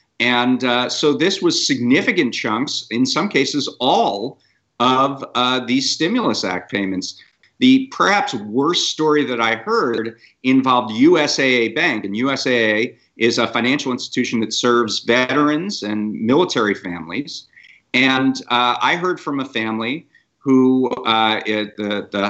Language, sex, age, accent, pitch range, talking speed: English, male, 50-69, American, 115-140 Hz, 135 wpm